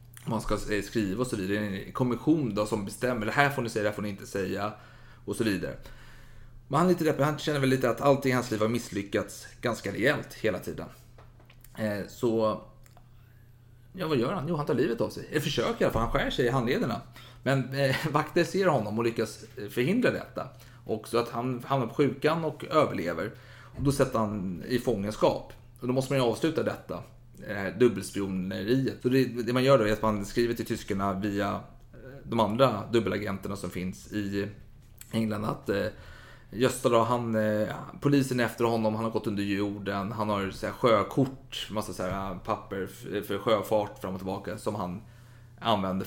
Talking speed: 180 wpm